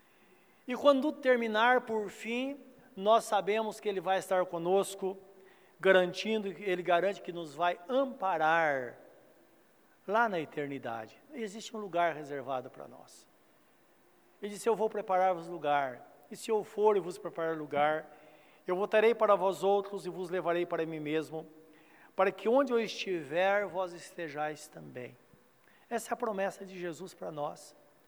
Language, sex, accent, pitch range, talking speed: Portuguese, male, Brazilian, 170-215 Hz, 145 wpm